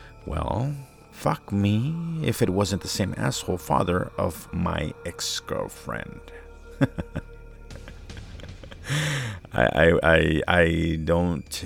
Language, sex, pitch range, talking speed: English, male, 85-110 Hz, 95 wpm